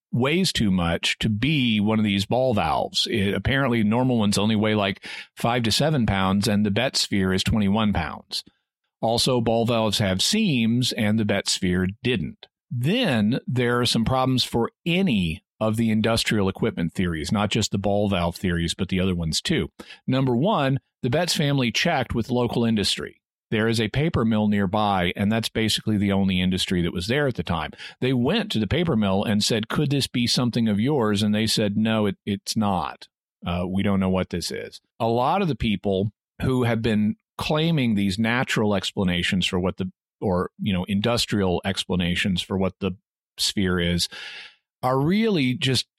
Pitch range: 95-120 Hz